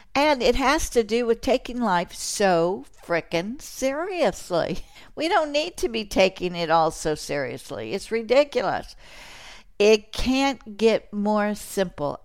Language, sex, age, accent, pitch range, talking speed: English, female, 60-79, American, 190-250 Hz, 135 wpm